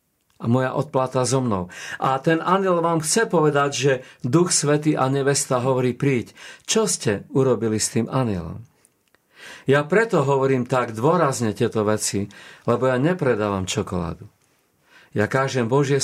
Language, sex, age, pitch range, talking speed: Slovak, male, 50-69, 115-155 Hz, 145 wpm